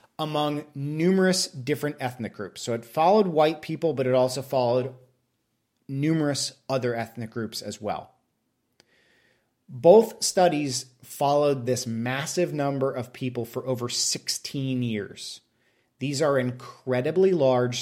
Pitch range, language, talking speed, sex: 120-150 Hz, English, 120 wpm, male